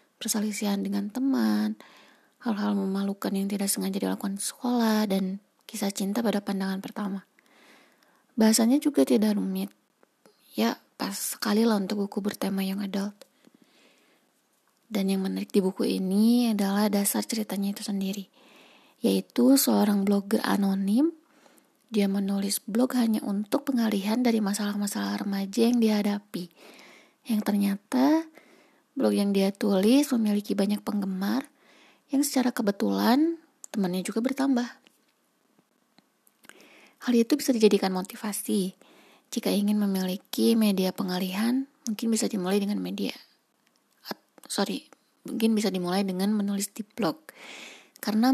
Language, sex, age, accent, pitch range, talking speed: Indonesian, female, 20-39, native, 200-240 Hz, 115 wpm